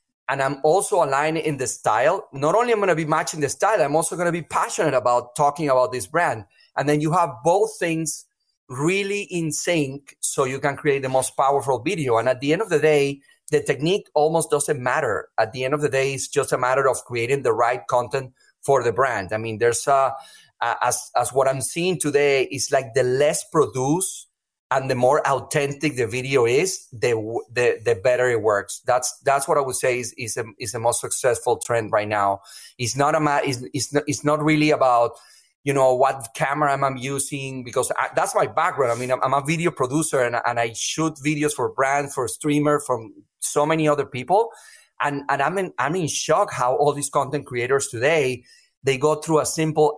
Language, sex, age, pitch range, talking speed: English, male, 30-49, 130-155 Hz, 215 wpm